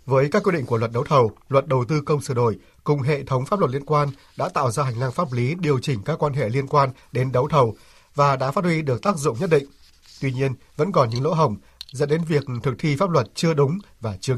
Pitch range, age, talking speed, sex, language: 130-160 Hz, 60-79, 270 wpm, male, Vietnamese